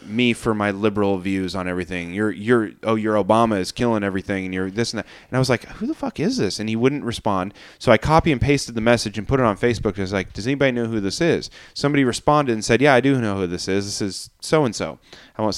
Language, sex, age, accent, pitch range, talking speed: English, male, 20-39, American, 100-130 Hz, 275 wpm